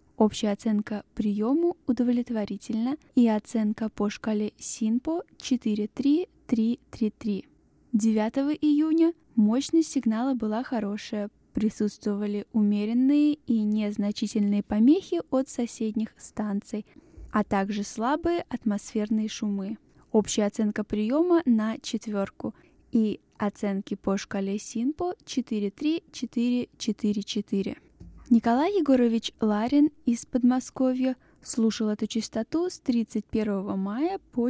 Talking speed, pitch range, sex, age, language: 90 wpm, 210-260 Hz, female, 10-29, Russian